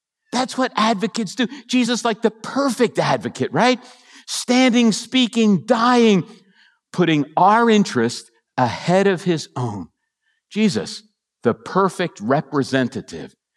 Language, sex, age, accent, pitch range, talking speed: English, male, 50-69, American, 145-225 Hz, 105 wpm